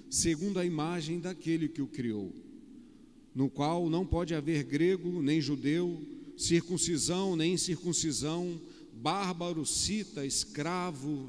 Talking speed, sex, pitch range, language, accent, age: 110 wpm, male, 150-195 Hz, Portuguese, Brazilian, 50-69